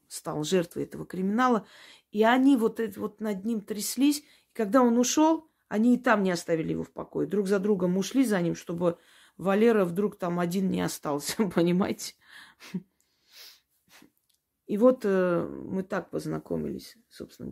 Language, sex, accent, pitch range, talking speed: Russian, female, native, 165-220 Hz, 145 wpm